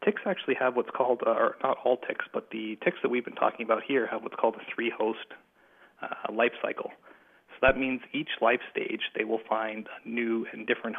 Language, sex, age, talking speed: English, male, 30-49, 215 wpm